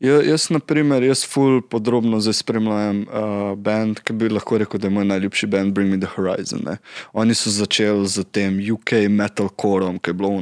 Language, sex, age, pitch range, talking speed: Slovak, male, 20-39, 100-115 Hz, 190 wpm